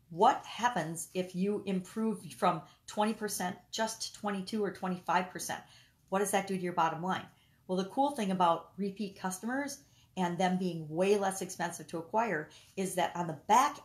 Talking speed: 175 wpm